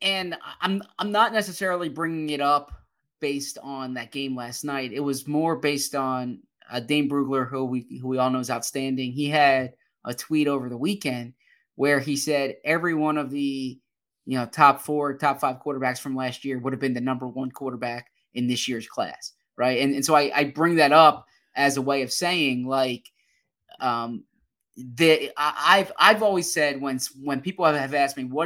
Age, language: 20-39, English